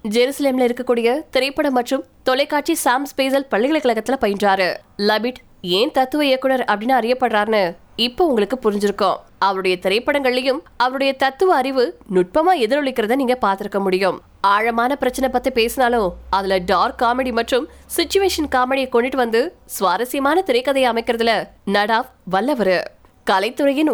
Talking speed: 40 wpm